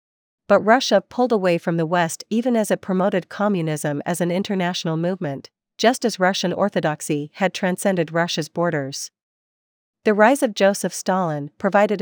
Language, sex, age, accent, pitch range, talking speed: English, female, 40-59, American, 160-205 Hz, 150 wpm